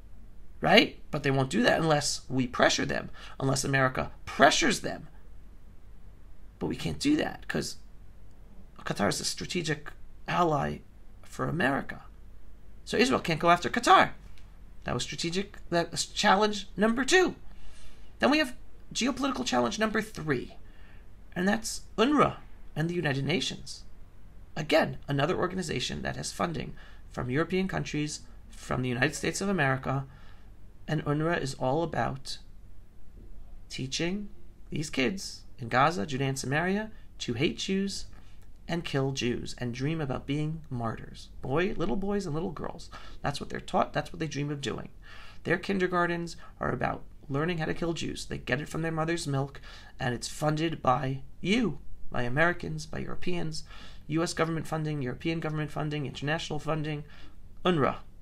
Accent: American